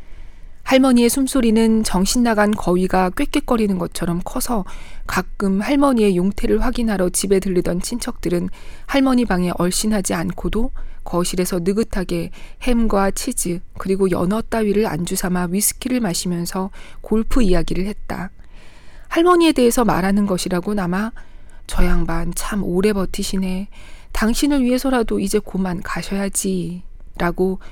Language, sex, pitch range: Korean, female, 180-230 Hz